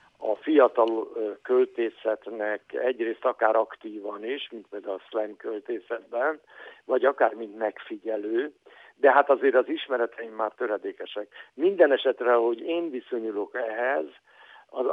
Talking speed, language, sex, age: 120 wpm, Hungarian, male, 60-79